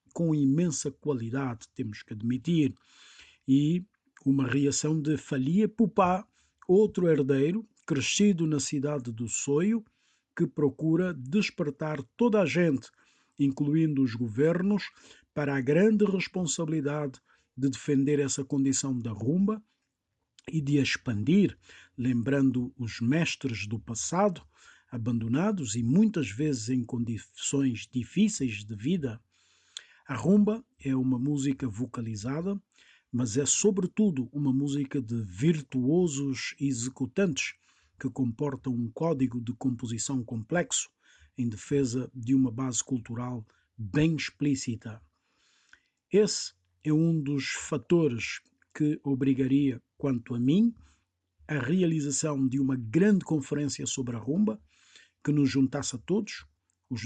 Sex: male